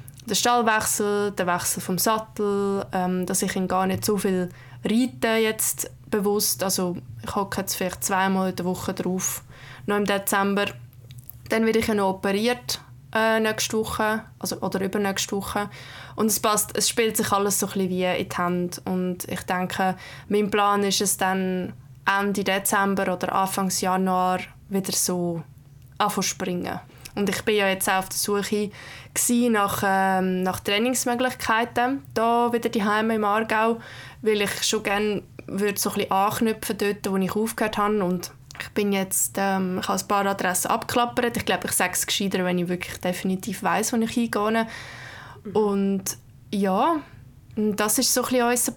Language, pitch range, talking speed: German, 185-215 Hz, 165 wpm